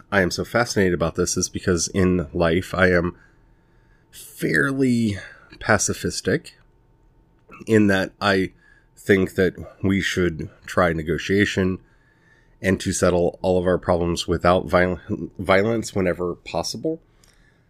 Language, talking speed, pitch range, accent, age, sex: English, 120 wpm, 95-120 Hz, American, 30-49, male